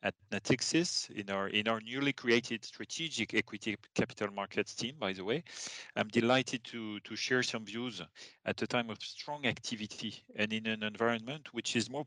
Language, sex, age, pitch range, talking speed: English, male, 40-59, 110-140 Hz, 180 wpm